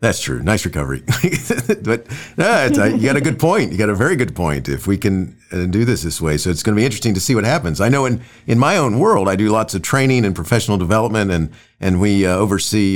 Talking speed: 255 wpm